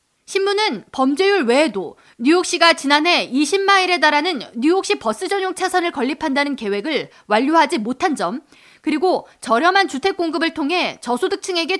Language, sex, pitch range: Korean, female, 265-365 Hz